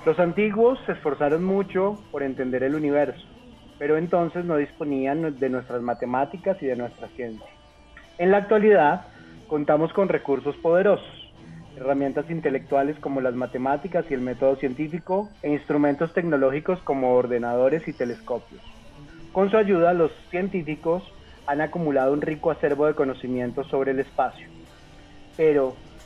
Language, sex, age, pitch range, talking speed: Spanish, male, 30-49, 135-175 Hz, 135 wpm